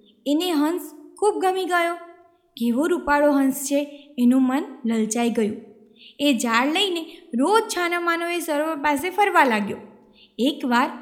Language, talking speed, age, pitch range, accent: Gujarati, 130 wpm, 20-39, 255-355 Hz, native